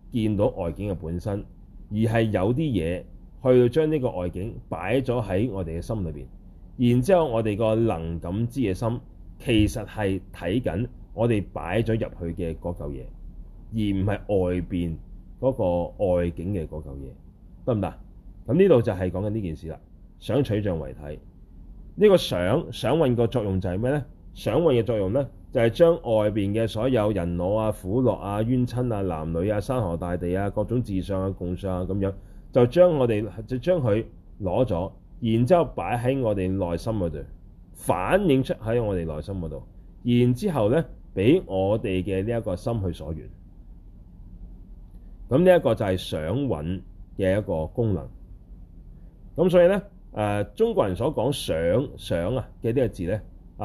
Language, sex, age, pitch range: Chinese, male, 30-49, 90-120 Hz